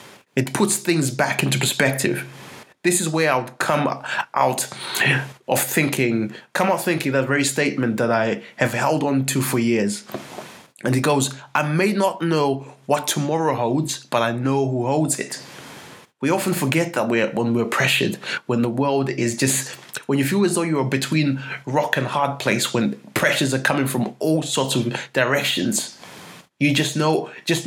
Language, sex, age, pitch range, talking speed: English, male, 20-39, 130-160 Hz, 180 wpm